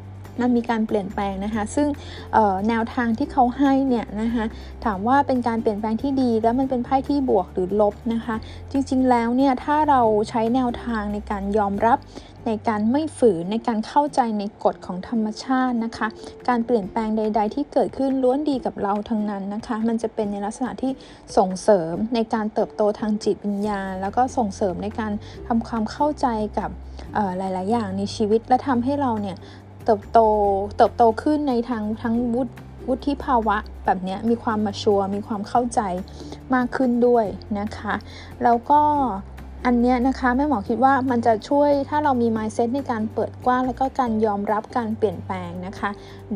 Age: 10-29